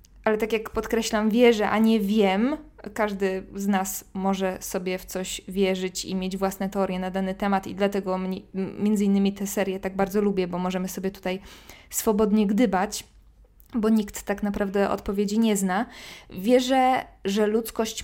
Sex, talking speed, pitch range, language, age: female, 160 wpm, 195-225 Hz, Polish, 20-39